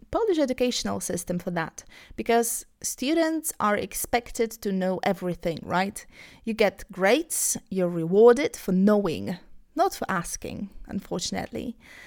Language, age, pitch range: Polish, 30-49, 200-255 Hz